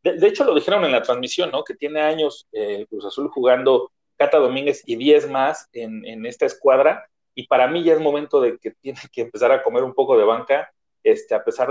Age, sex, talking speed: 40-59, male, 230 wpm